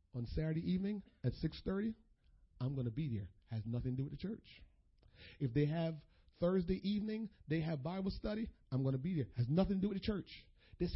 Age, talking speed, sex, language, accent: 40-59, 215 wpm, male, English, American